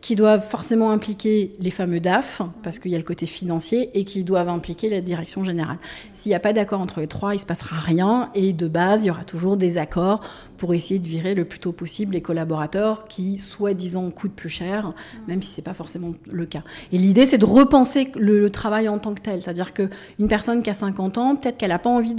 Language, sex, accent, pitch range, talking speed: French, female, French, 180-220 Hz, 245 wpm